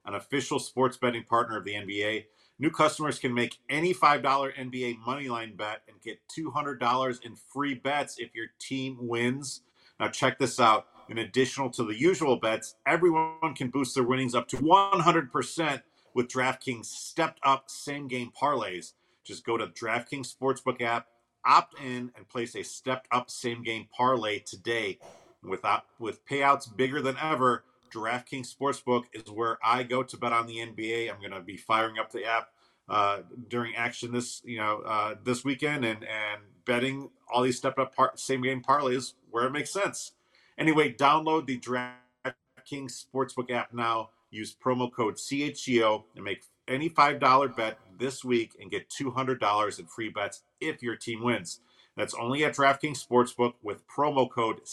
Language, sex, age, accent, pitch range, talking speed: English, male, 40-59, American, 115-135 Hz, 160 wpm